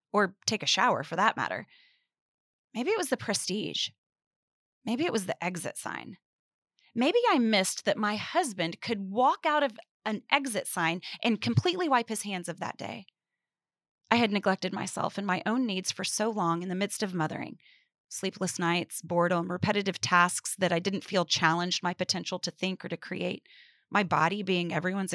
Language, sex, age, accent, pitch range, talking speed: English, female, 30-49, American, 180-245 Hz, 180 wpm